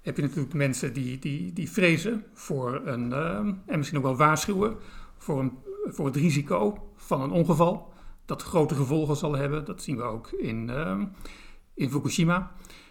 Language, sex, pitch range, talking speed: Dutch, male, 135-170 Hz, 170 wpm